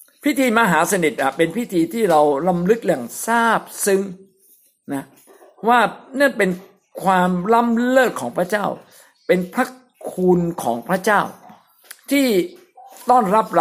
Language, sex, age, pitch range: Thai, male, 60-79, 160-250 Hz